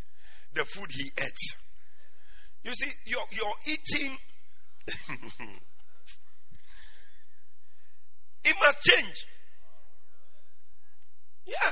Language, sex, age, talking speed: English, male, 50-69, 65 wpm